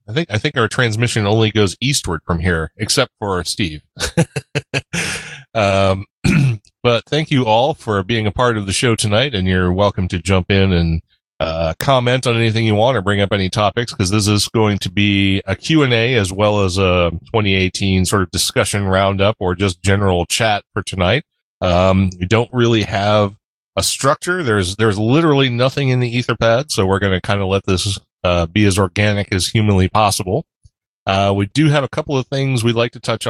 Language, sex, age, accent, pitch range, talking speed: English, male, 30-49, American, 95-120 Hz, 195 wpm